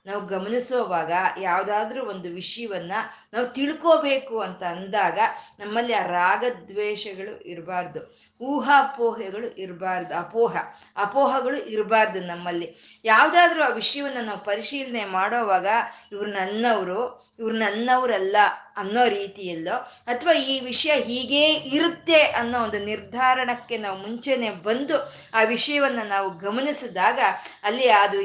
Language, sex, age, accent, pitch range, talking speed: Kannada, female, 20-39, native, 195-255 Hz, 100 wpm